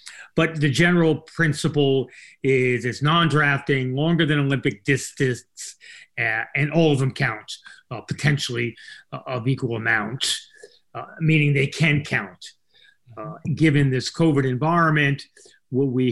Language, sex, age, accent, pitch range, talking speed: English, male, 30-49, American, 120-150 Hz, 125 wpm